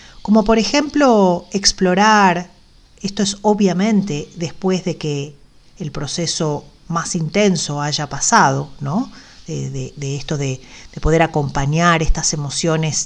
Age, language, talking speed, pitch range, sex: 40-59, Spanish, 125 wpm, 150-200 Hz, female